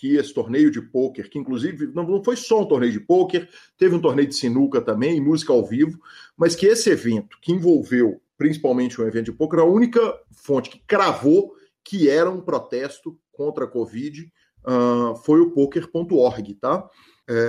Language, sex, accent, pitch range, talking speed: Portuguese, male, Brazilian, 125-190 Hz, 175 wpm